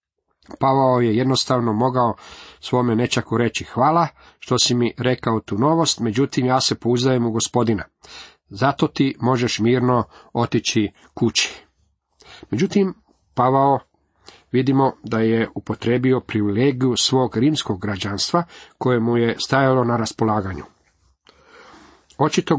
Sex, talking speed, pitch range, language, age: male, 115 wpm, 110-140 Hz, Croatian, 40-59